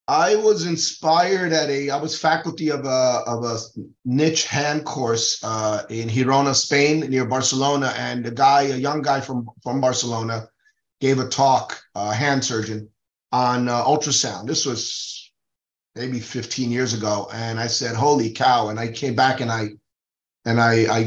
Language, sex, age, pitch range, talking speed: English, male, 30-49, 125-150 Hz, 170 wpm